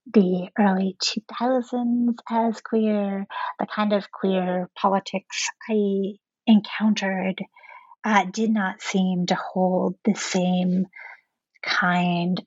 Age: 30-49